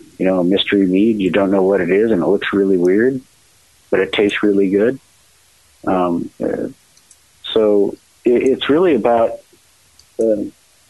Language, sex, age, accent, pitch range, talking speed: English, male, 50-69, American, 95-105 Hz, 160 wpm